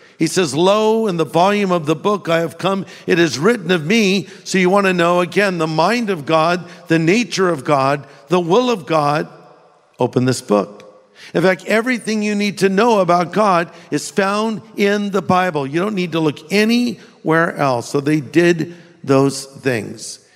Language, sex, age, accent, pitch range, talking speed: English, male, 50-69, American, 150-195 Hz, 190 wpm